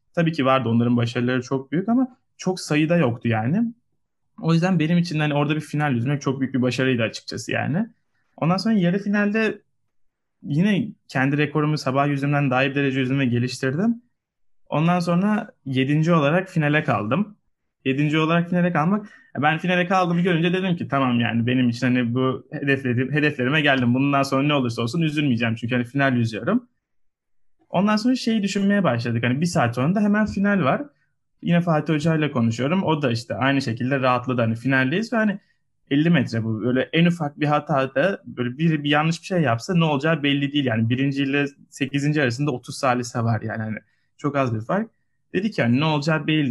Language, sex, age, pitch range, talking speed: Turkish, male, 20-39, 125-175 Hz, 185 wpm